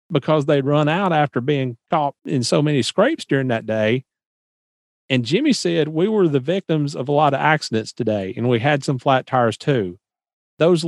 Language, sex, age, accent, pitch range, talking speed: English, male, 40-59, American, 125-155 Hz, 195 wpm